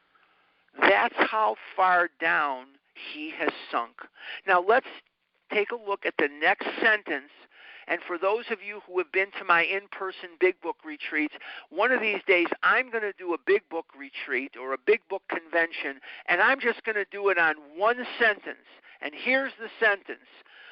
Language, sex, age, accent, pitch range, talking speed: English, male, 50-69, American, 195-250 Hz, 175 wpm